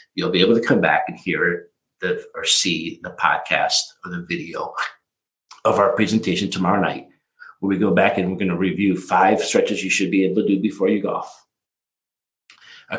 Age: 50-69